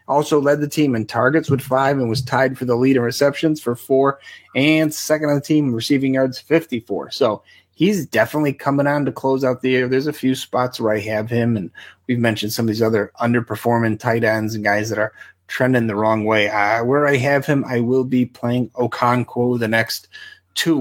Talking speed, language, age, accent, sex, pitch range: 220 wpm, English, 30-49, American, male, 115-140 Hz